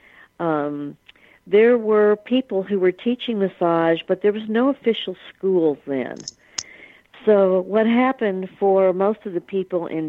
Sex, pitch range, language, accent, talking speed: female, 160-200 Hz, English, American, 145 wpm